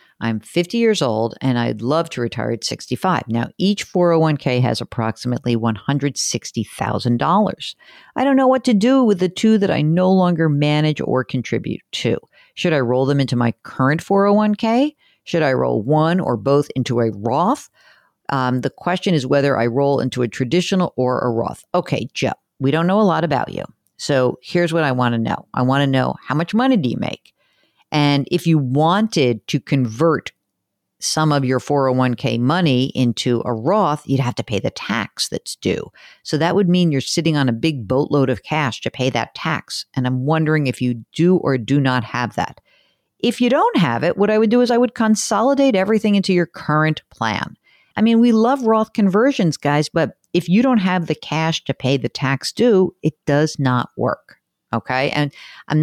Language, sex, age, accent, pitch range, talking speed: English, female, 50-69, American, 125-180 Hz, 195 wpm